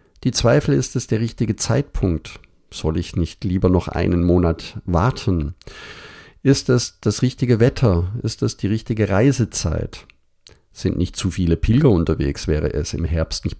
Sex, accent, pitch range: male, German, 90-115 Hz